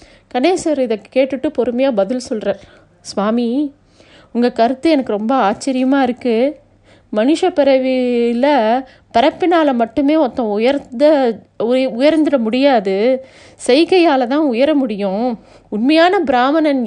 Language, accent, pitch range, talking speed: Tamil, native, 240-295 Hz, 95 wpm